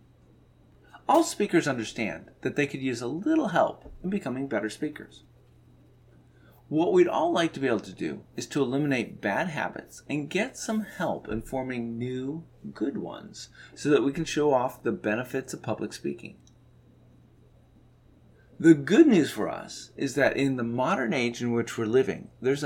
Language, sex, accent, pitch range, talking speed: English, male, American, 110-150 Hz, 170 wpm